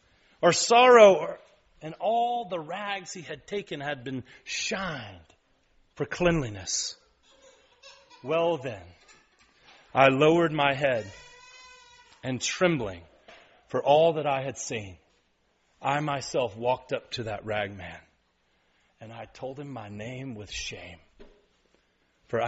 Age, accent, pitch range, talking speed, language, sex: 40-59, American, 105-150 Hz, 120 wpm, English, male